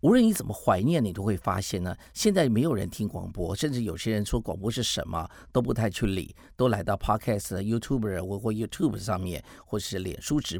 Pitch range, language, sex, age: 95-125 Hz, Chinese, male, 50-69